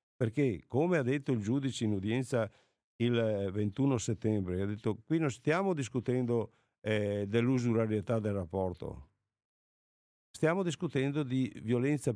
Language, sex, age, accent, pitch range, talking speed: Italian, male, 50-69, native, 110-155 Hz, 125 wpm